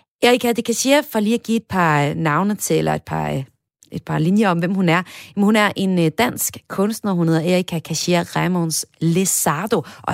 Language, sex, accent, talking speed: Danish, female, native, 195 wpm